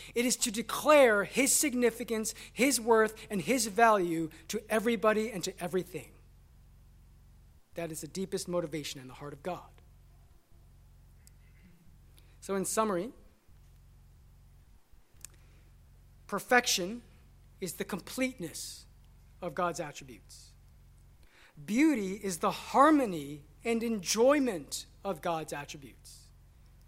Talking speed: 100 wpm